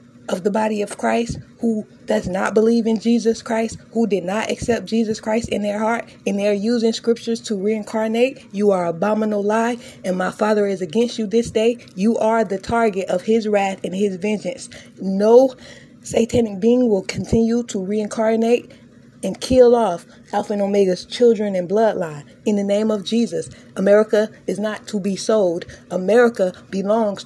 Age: 20-39